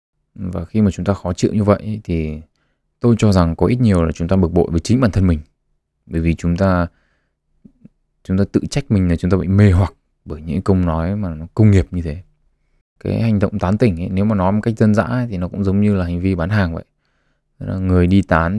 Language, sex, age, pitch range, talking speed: Vietnamese, male, 20-39, 85-105 Hz, 250 wpm